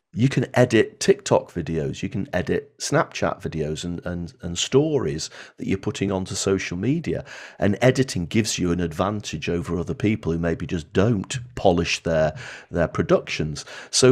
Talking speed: 160 wpm